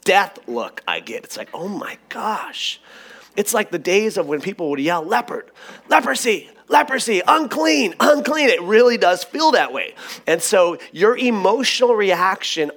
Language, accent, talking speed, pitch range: English, American, 160 wpm, 145-220 Hz